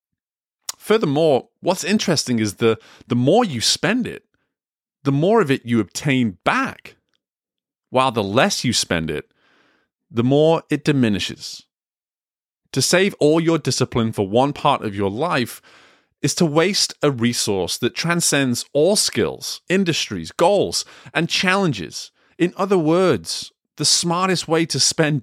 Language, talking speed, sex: English, 140 wpm, male